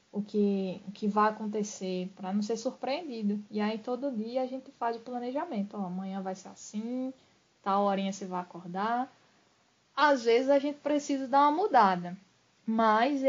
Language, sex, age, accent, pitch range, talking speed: Portuguese, female, 10-29, Brazilian, 200-255 Hz, 170 wpm